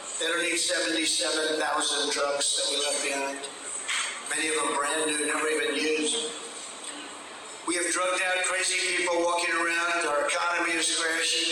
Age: 50-69